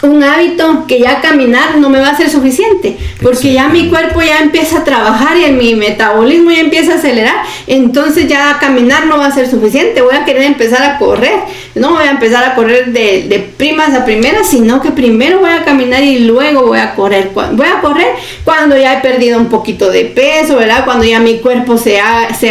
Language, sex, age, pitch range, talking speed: Spanish, female, 40-59, 230-315 Hz, 220 wpm